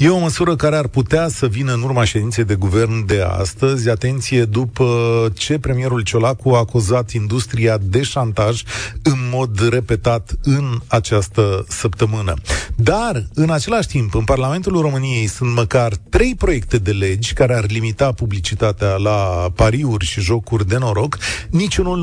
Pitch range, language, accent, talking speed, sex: 105-135 Hz, Romanian, native, 150 wpm, male